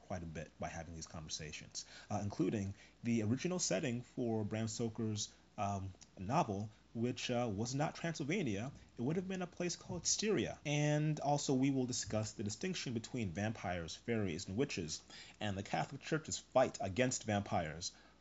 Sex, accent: male, American